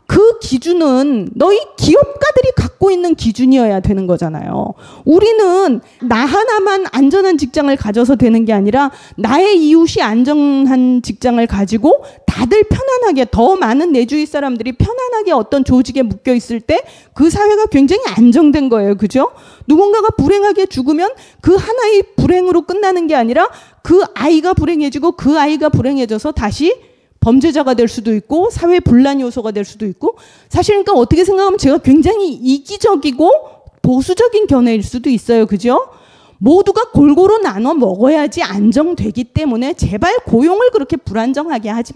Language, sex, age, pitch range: Korean, female, 30-49, 250-385 Hz